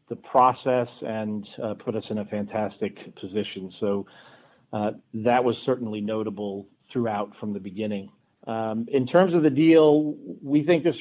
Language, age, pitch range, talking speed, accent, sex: English, 50-69, 115-135 Hz, 160 wpm, American, male